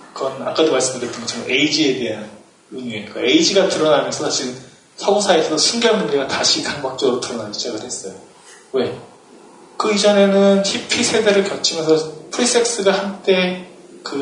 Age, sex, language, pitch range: 30-49, male, Korean, 140-200 Hz